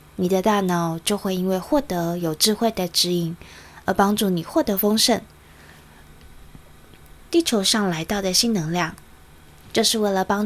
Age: 20-39